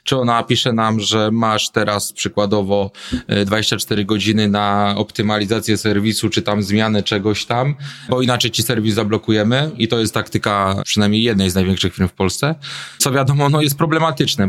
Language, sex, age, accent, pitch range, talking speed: Polish, male, 20-39, native, 110-125 Hz, 160 wpm